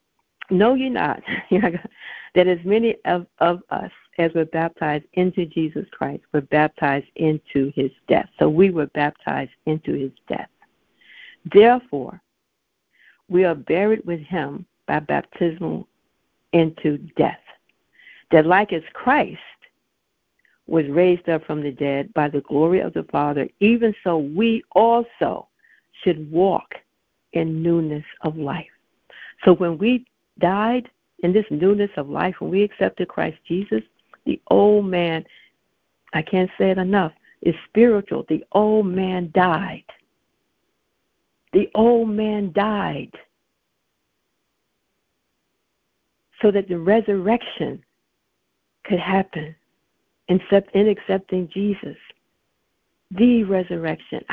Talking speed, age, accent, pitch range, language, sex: 115 wpm, 60-79, American, 160-210 Hz, English, female